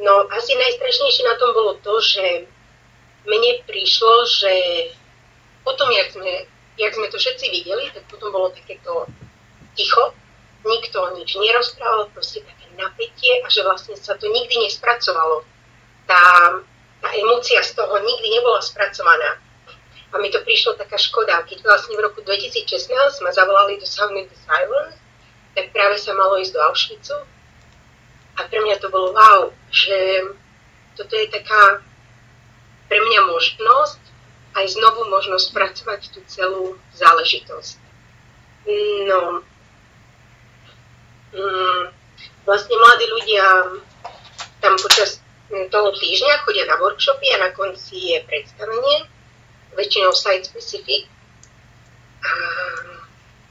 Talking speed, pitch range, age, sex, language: 125 wpm, 185-290 Hz, 30-49, female, Slovak